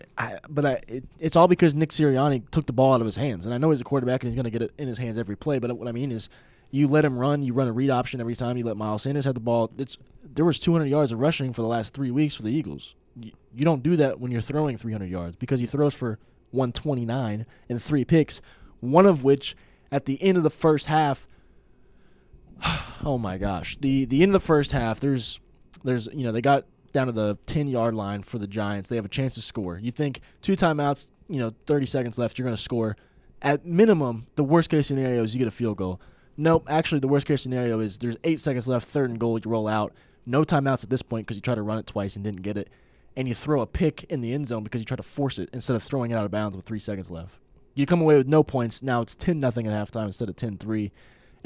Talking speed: 265 wpm